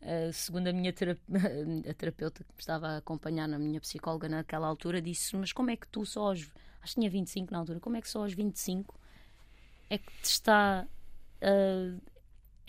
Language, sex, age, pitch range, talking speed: Portuguese, female, 20-39, 195-265 Hz, 210 wpm